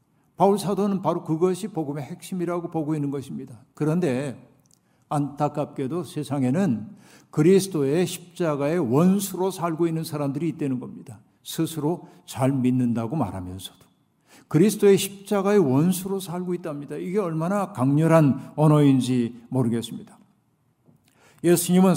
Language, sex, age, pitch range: Korean, male, 50-69, 140-180 Hz